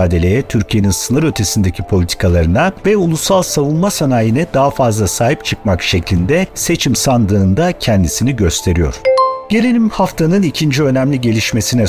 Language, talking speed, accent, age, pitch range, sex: Turkish, 110 wpm, native, 50-69, 100-140 Hz, male